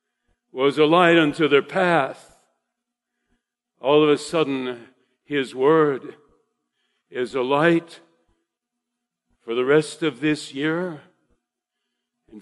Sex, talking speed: male, 105 wpm